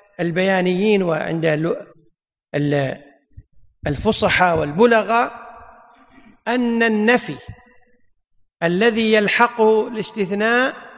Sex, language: male, Arabic